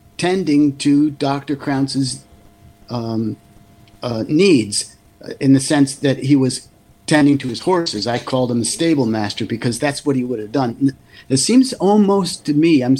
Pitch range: 125-150 Hz